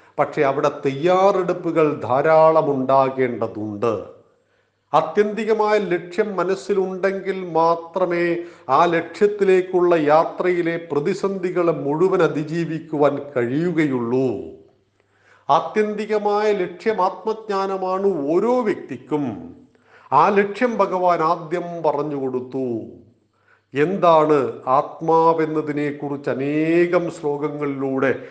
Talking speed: 65 wpm